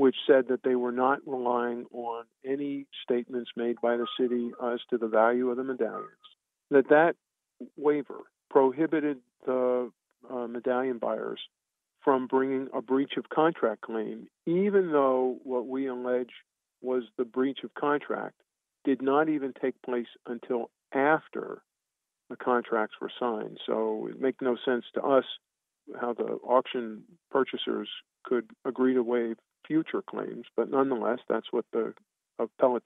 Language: English